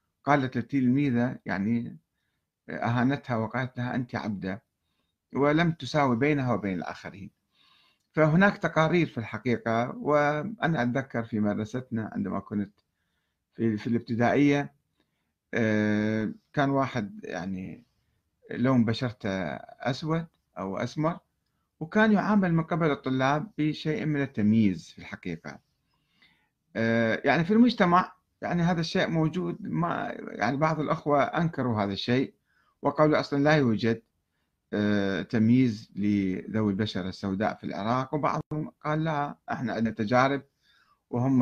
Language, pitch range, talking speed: Arabic, 105-145 Hz, 105 wpm